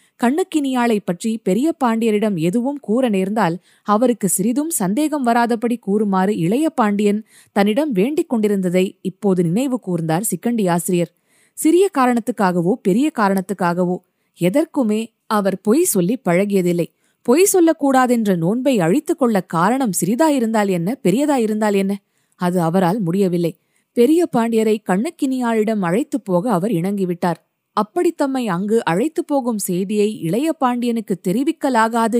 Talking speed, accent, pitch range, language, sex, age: 110 wpm, native, 185-245 Hz, Tamil, female, 20-39